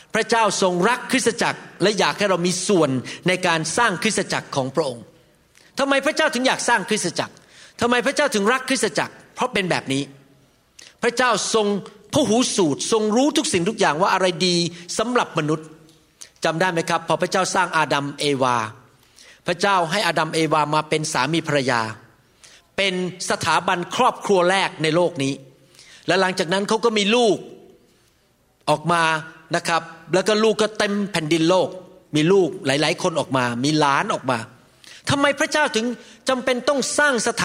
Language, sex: Thai, male